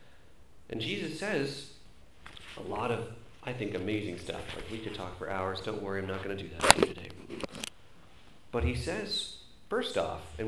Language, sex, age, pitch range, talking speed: English, male, 40-59, 105-145 Hz, 190 wpm